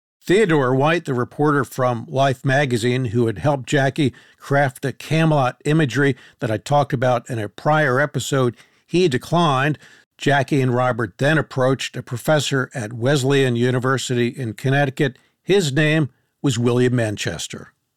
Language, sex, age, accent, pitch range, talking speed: English, male, 50-69, American, 125-150 Hz, 140 wpm